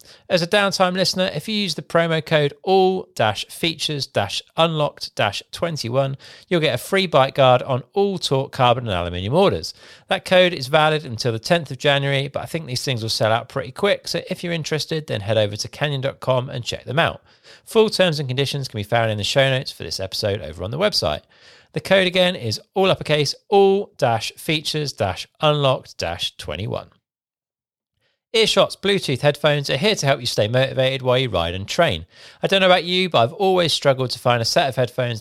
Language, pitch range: English, 115-170 Hz